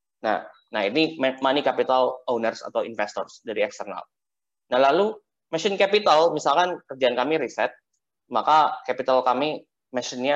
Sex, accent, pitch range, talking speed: male, native, 130-165 Hz, 125 wpm